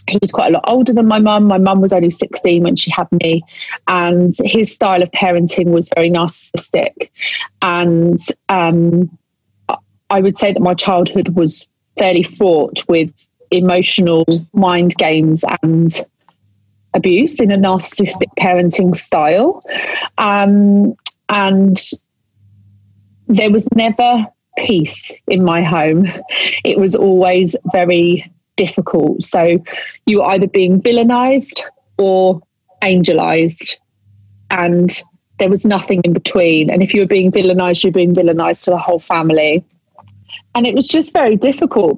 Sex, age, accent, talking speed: female, 30-49, British, 135 wpm